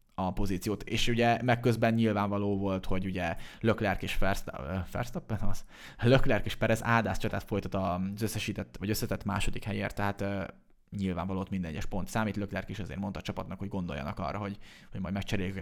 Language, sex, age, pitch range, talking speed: Hungarian, male, 20-39, 95-110 Hz, 165 wpm